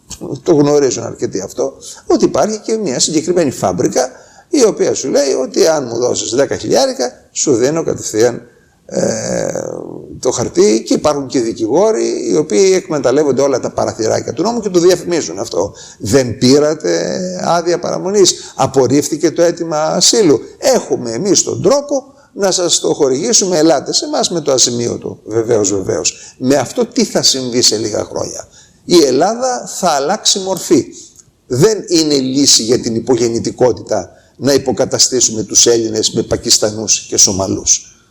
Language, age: Greek, 50-69